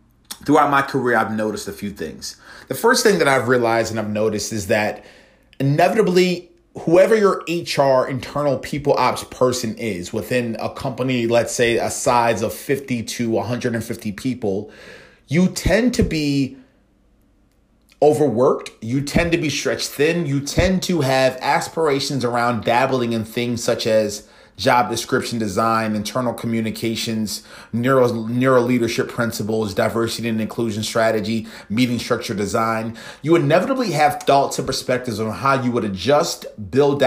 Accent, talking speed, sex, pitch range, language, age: American, 145 wpm, male, 110-140 Hz, English, 30-49